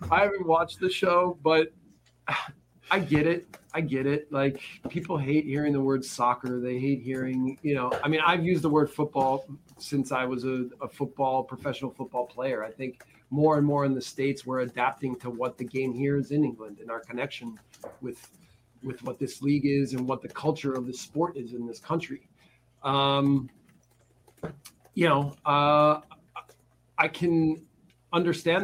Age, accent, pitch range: 30-49, American, 135-165 Hz